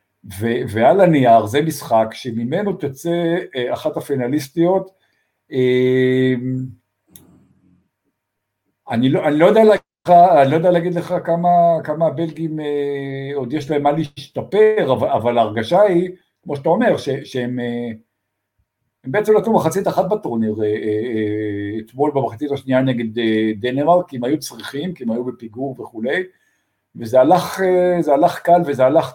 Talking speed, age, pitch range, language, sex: 145 wpm, 50-69, 115-170 Hz, Hebrew, male